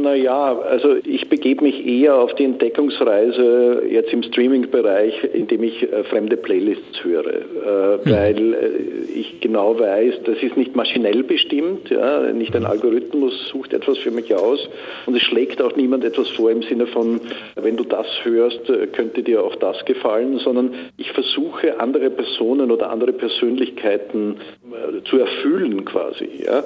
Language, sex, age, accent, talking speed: German, male, 50-69, Austrian, 145 wpm